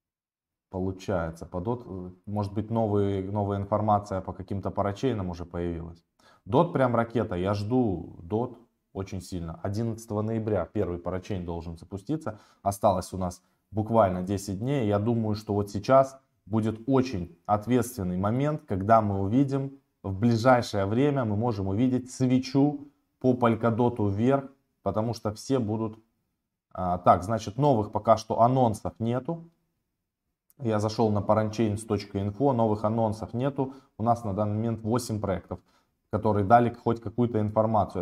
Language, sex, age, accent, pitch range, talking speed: Russian, male, 20-39, native, 95-120 Hz, 135 wpm